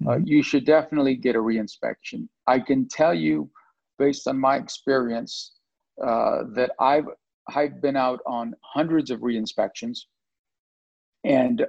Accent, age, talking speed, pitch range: American, 50-69, 135 wpm, 115-135 Hz